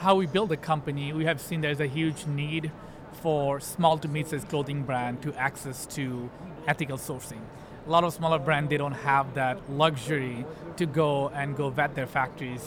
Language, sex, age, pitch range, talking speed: English, male, 30-49, 140-165 Hz, 190 wpm